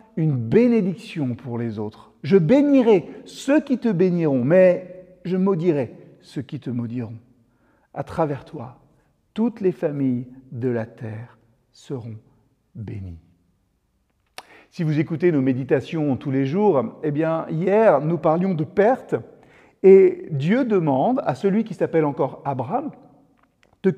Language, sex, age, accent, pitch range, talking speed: French, male, 50-69, French, 135-210 Hz, 140 wpm